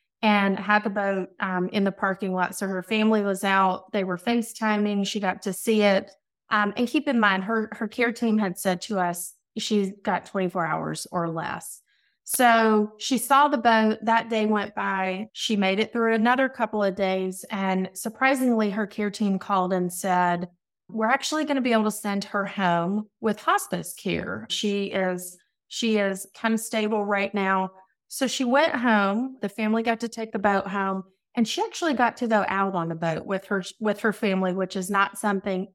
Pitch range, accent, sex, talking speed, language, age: 190-225 Hz, American, female, 200 wpm, English, 30-49